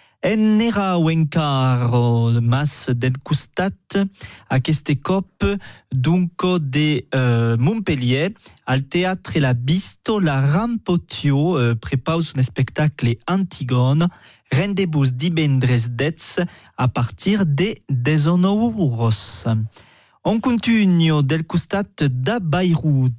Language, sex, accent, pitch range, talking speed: French, male, French, 125-180 Hz, 90 wpm